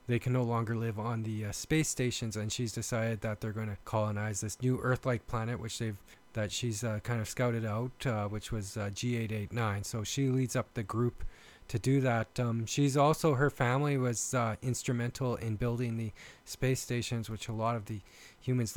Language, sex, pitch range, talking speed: English, male, 110-130 Hz, 205 wpm